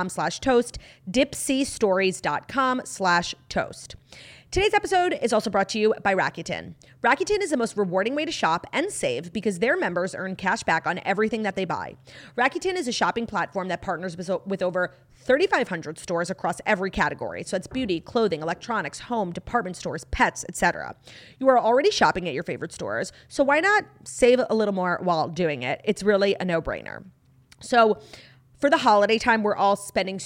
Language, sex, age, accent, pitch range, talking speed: English, female, 30-49, American, 180-235 Hz, 175 wpm